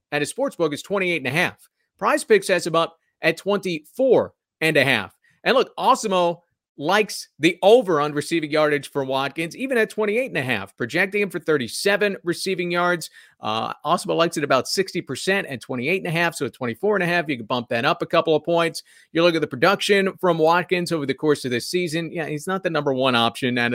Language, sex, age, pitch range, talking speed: English, male, 40-59, 130-175 Hz, 225 wpm